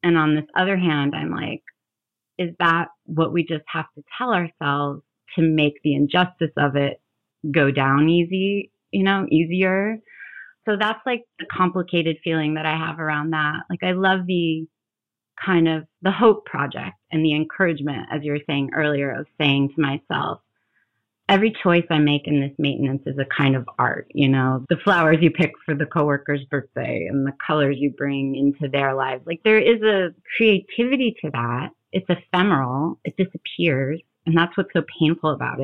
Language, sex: English, female